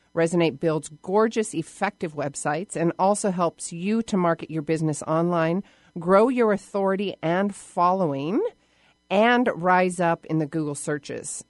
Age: 40-59